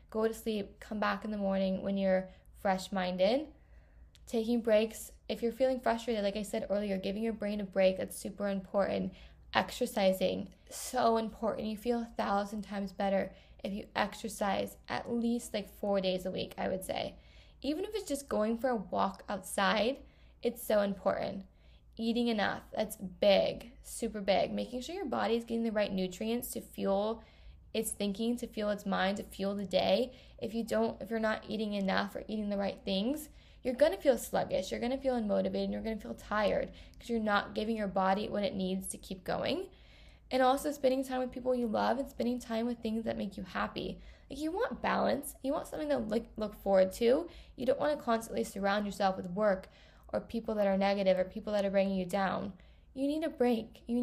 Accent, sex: American, female